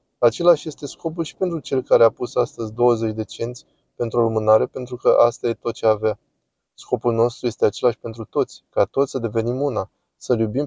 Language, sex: Romanian, male